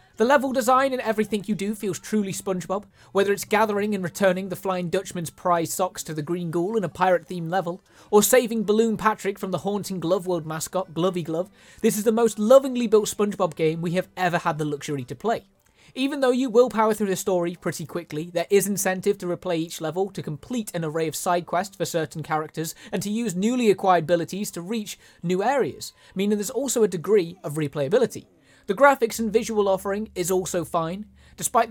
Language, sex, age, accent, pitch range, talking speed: Italian, male, 20-39, British, 170-215 Hz, 205 wpm